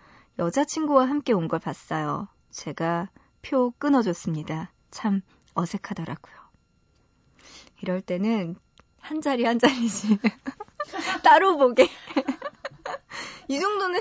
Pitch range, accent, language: 180-275 Hz, native, Korean